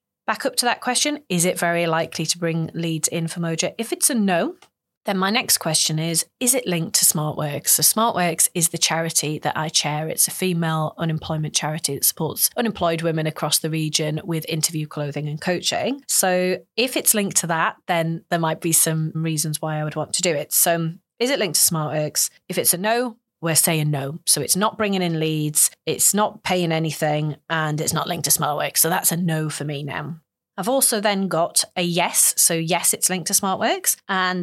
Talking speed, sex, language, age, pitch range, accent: 215 wpm, female, English, 30-49, 155-180 Hz, British